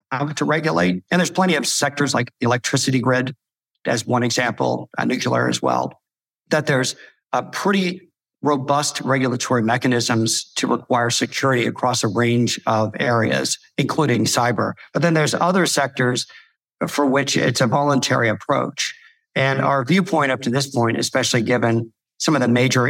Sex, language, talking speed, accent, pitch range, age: male, English, 155 wpm, American, 120-140 Hz, 50-69